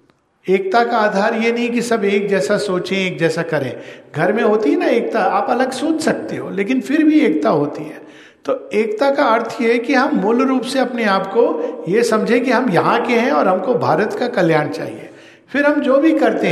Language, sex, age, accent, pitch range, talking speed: Hindi, male, 50-69, native, 170-240 Hz, 220 wpm